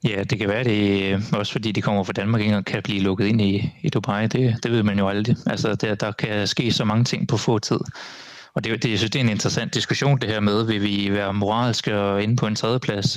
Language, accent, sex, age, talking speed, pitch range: Danish, native, male, 20-39, 260 wpm, 100-120 Hz